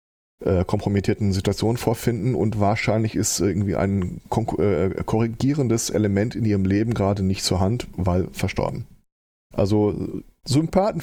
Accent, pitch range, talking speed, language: German, 100-130 Hz, 130 wpm, German